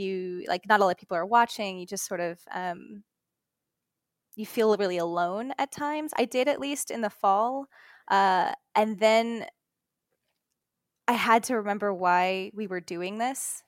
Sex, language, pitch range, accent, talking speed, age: female, English, 190-230 Hz, American, 165 wpm, 20-39